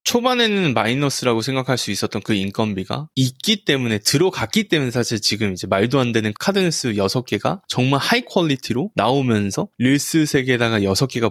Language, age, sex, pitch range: Korean, 20-39, male, 110-150 Hz